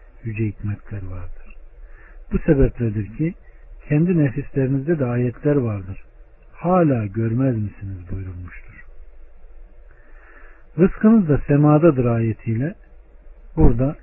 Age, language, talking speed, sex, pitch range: 60-79, Turkish, 85 wpm, male, 105-145 Hz